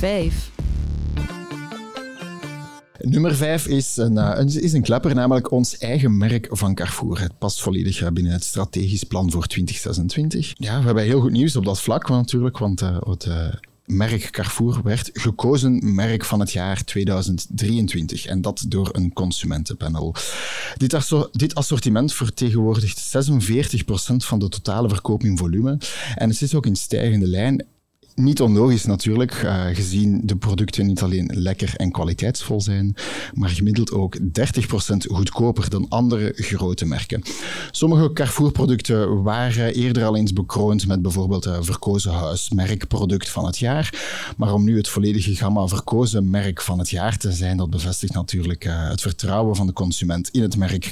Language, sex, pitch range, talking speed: Dutch, male, 95-125 Hz, 155 wpm